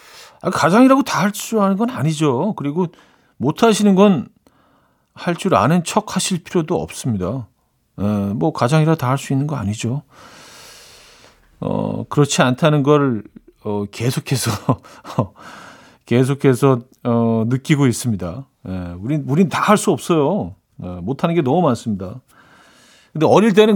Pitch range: 115-170 Hz